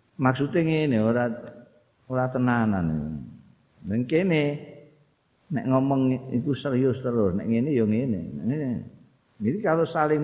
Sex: male